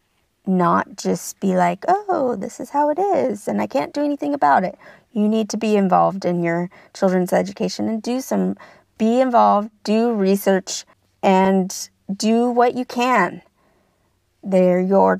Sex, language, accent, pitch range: female, English, American, 185-240 Hz